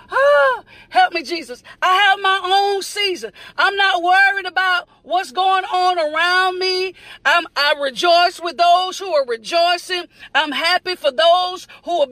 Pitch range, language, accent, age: 305-380 Hz, English, American, 40-59